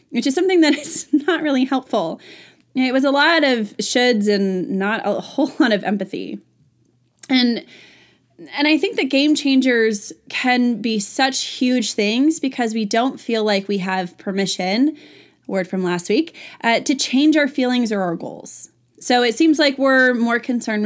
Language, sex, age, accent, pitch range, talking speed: English, female, 20-39, American, 205-275 Hz, 175 wpm